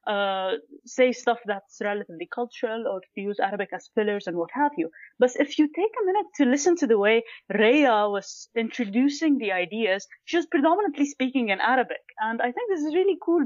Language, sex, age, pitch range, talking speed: Arabic, female, 20-39, 200-260 Hz, 195 wpm